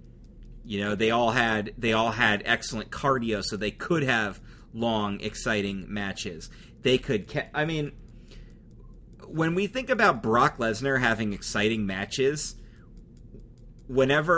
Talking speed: 130 wpm